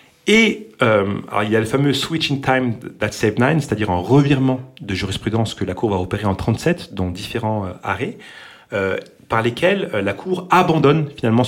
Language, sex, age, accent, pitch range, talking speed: French, male, 40-59, French, 105-145 Hz, 205 wpm